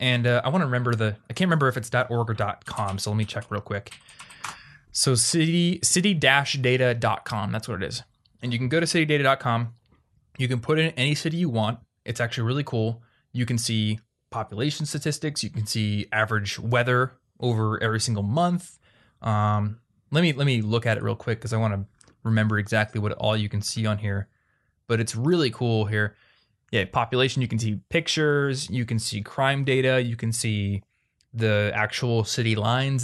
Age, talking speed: 20-39, 195 wpm